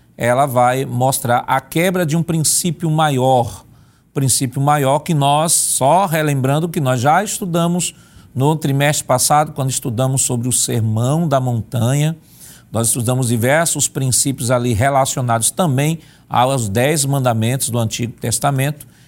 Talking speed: 130 wpm